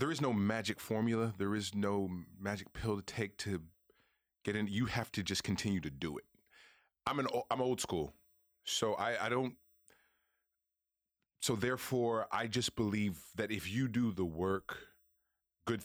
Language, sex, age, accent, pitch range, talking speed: English, male, 30-49, American, 95-115 Hz, 170 wpm